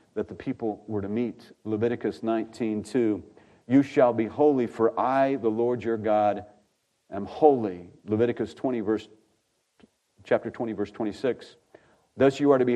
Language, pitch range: English, 110-135 Hz